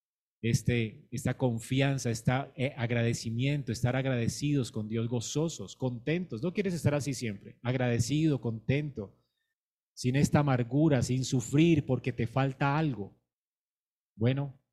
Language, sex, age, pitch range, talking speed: Spanish, male, 30-49, 120-160 Hz, 110 wpm